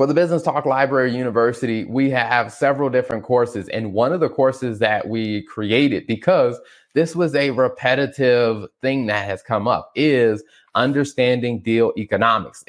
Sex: male